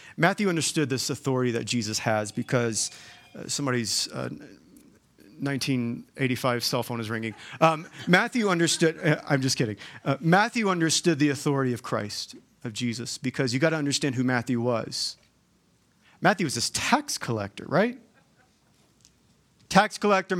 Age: 40-59